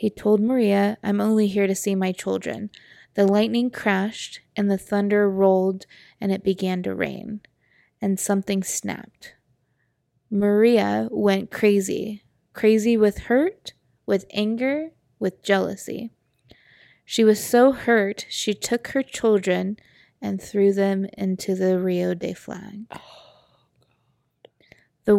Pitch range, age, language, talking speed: 195-220 Hz, 20-39, English, 125 wpm